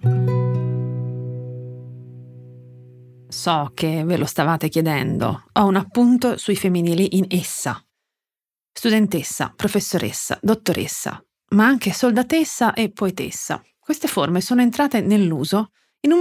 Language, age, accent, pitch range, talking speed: Italian, 30-49, native, 165-225 Hz, 105 wpm